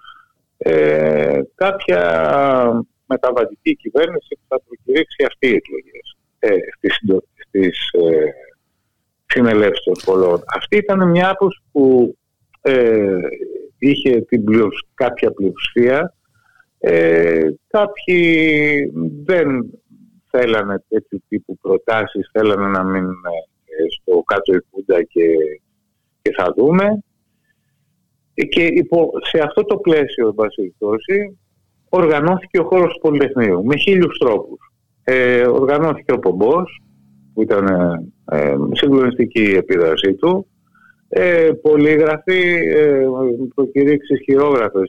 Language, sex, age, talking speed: Greek, male, 50-69, 85 wpm